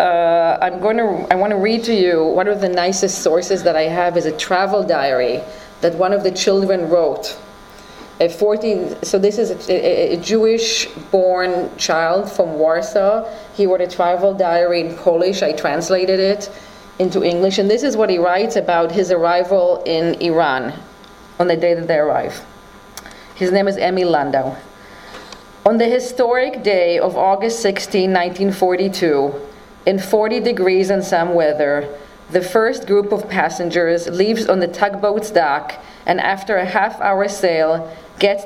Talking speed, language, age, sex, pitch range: 165 wpm, English, 30-49, female, 175-205 Hz